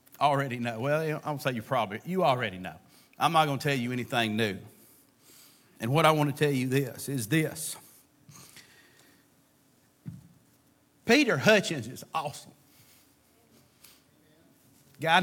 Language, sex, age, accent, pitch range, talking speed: English, male, 40-59, American, 130-150 Hz, 140 wpm